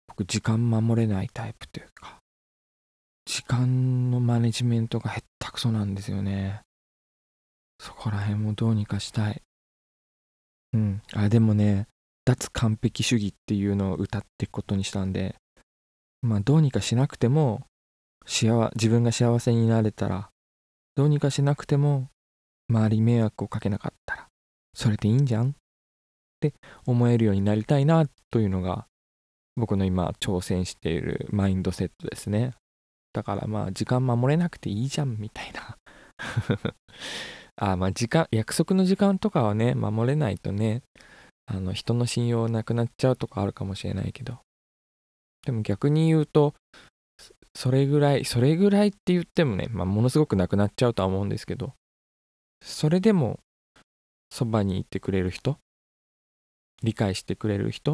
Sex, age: male, 20-39